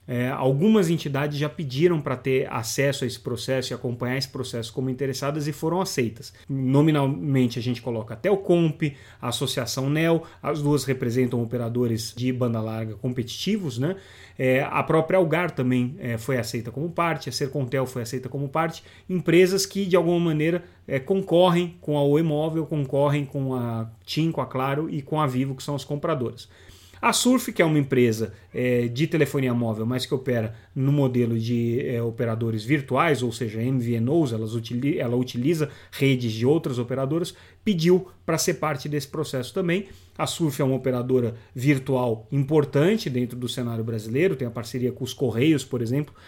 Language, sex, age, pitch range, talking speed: Portuguese, male, 30-49, 120-160 Hz, 170 wpm